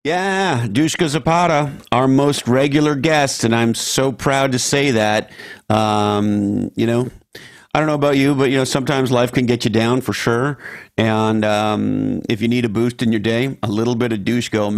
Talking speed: 200 wpm